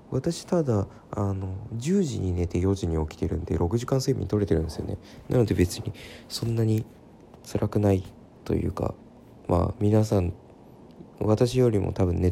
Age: 20-39